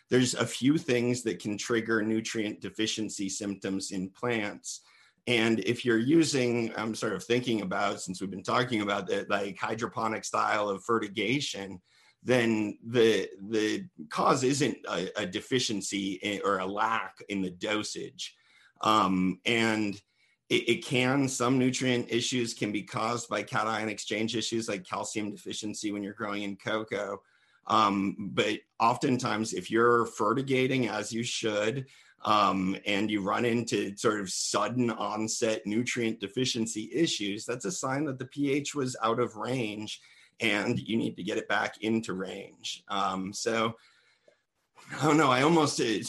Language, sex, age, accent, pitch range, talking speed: English, male, 50-69, American, 100-120 Hz, 155 wpm